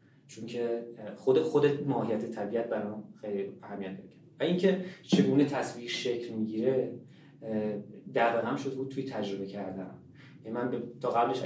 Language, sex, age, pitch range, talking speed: Persian, male, 30-49, 110-140 Hz, 140 wpm